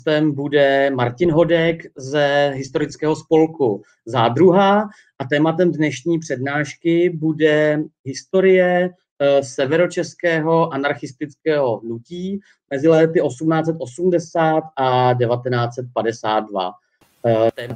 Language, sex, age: Czech, male, 40-59